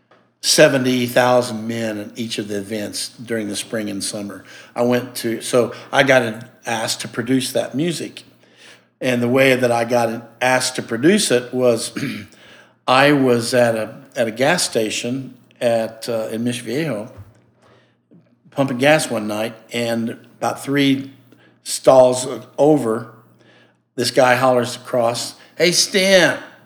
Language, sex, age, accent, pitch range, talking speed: English, male, 60-79, American, 110-130 Hz, 135 wpm